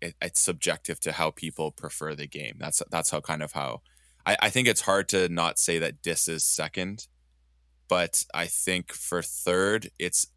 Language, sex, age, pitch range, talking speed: English, male, 20-39, 75-90 Hz, 185 wpm